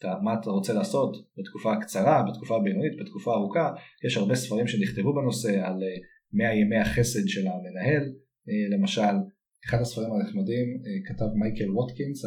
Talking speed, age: 135 wpm, 30-49